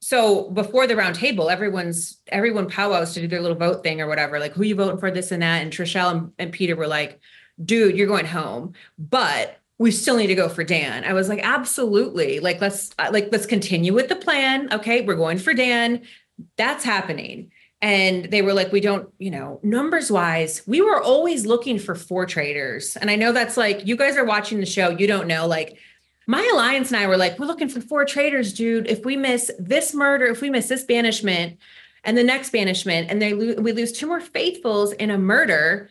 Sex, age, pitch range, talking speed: female, 30-49, 180-245 Hz, 215 wpm